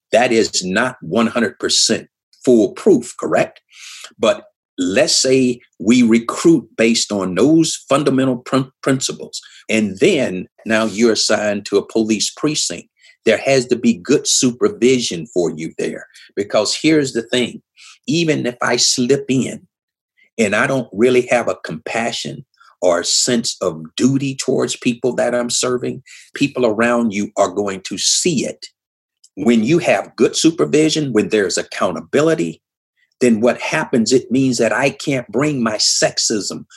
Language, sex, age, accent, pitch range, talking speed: English, male, 50-69, American, 115-135 Hz, 140 wpm